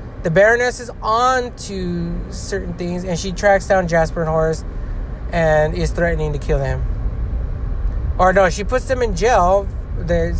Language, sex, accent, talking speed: English, male, American, 160 wpm